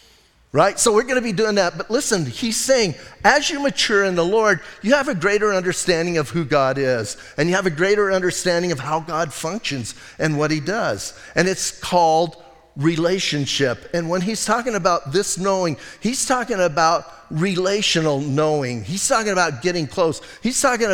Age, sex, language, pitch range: 40-59, male, English, 165-210 Hz